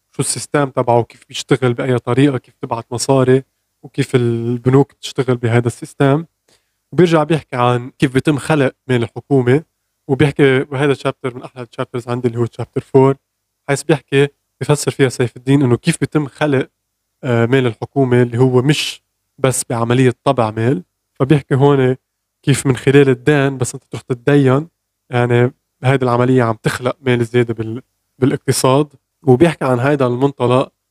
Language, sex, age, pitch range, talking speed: Arabic, male, 20-39, 120-140 Hz, 150 wpm